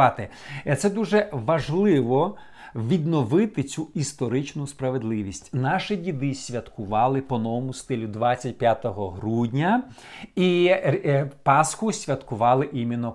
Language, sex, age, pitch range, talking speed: Ukrainian, male, 50-69, 115-150 Hz, 85 wpm